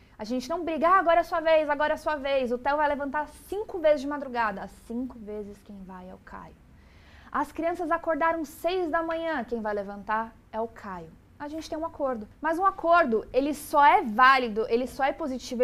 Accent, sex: Brazilian, female